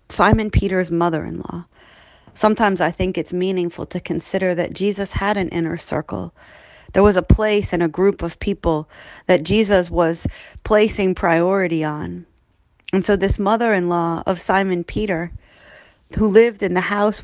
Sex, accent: female, American